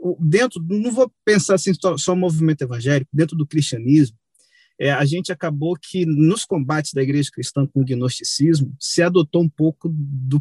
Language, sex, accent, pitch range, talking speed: Portuguese, male, Brazilian, 140-190 Hz, 175 wpm